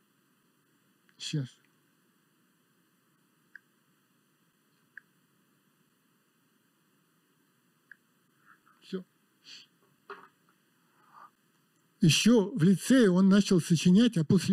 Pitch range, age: 165-200 Hz, 60-79